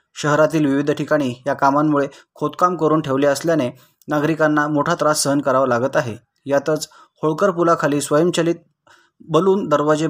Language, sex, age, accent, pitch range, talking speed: Marathi, male, 20-39, native, 140-155 Hz, 130 wpm